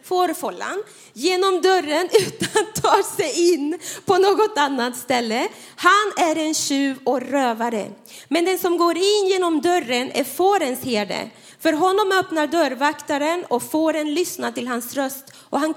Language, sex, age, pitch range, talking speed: Swedish, female, 30-49, 235-345 Hz, 150 wpm